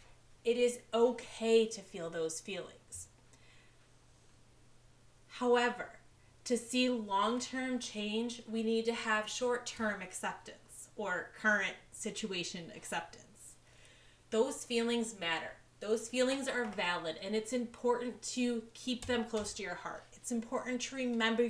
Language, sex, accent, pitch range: English, female, American, 185-235 Hz